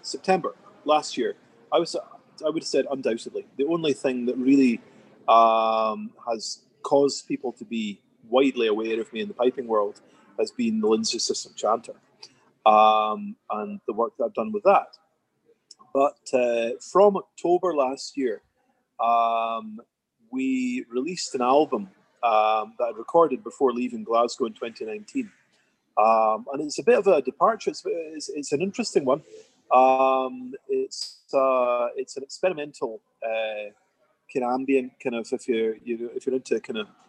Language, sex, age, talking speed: English, male, 30-49, 160 wpm